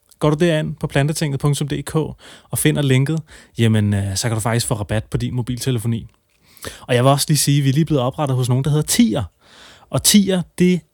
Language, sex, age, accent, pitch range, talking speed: Danish, male, 30-49, native, 115-160 Hz, 210 wpm